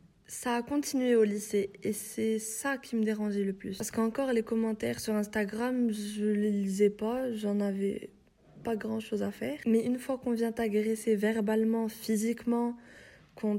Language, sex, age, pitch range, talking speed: French, female, 20-39, 210-235 Hz, 170 wpm